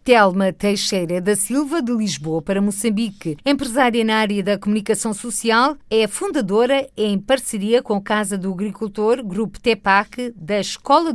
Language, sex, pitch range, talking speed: Portuguese, female, 195-240 Hz, 145 wpm